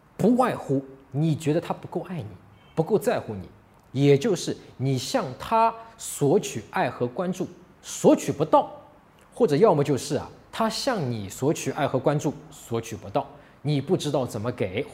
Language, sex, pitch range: Chinese, male, 140-215 Hz